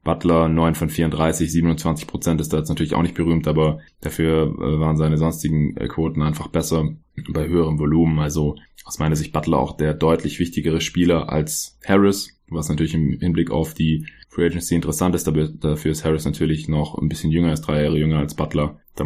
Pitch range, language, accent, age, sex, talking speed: 75-85 Hz, German, German, 20-39, male, 190 wpm